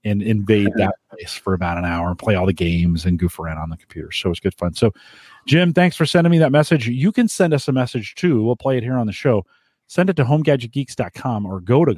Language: English